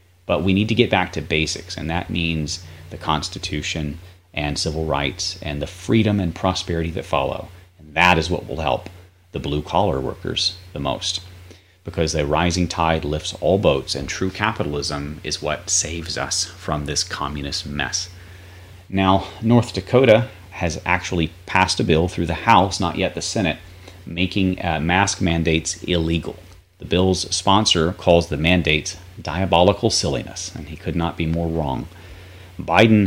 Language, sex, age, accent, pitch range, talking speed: English, male, 30-49, American, 80-95 Hz, 160 wpm